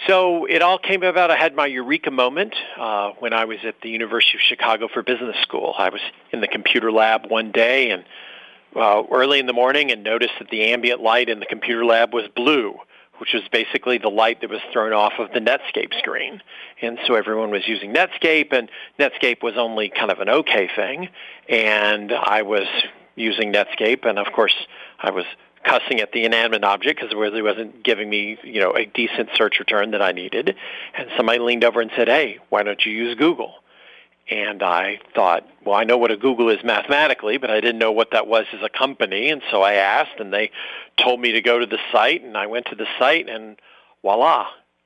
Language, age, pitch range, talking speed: English, 40-59, 110-125 Hz, 215 wpm